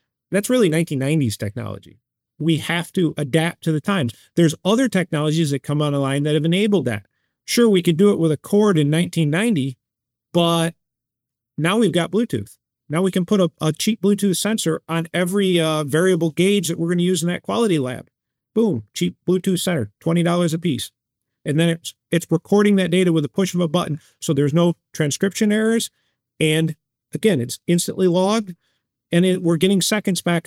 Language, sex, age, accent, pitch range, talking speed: English, male, 40-59, American, 145-185 Hz, 185 wpm